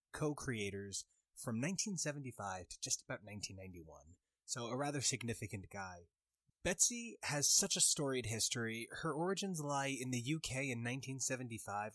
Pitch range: 110-145 Hz